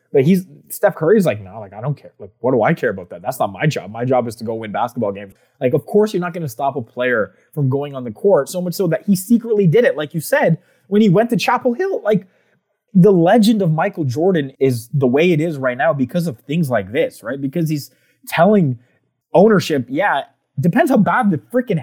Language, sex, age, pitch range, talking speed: English, male, 20-39, 120-180 Hz, 255 wpm